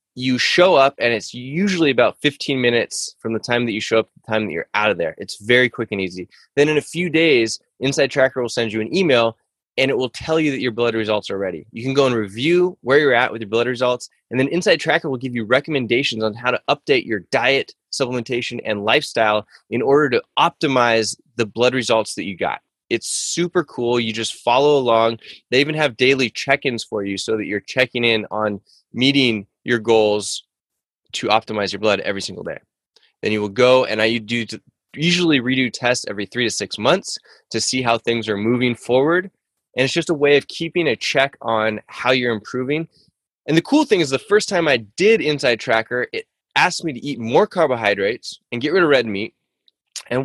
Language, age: English, 20-39